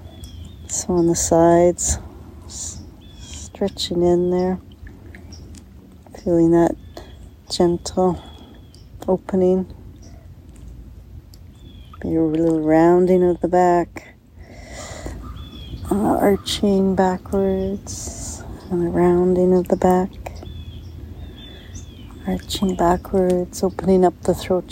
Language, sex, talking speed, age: English, female, 80 wpm, 40-59